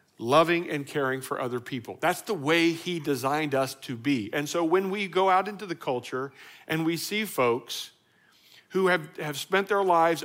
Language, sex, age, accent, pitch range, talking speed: English, male, 50-69, American, 125-175 Hz, 195 wpm